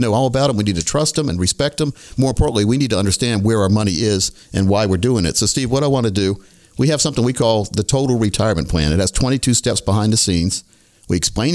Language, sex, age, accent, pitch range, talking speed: English, male, 50-69, American, 95-130 Hz, 270 wpm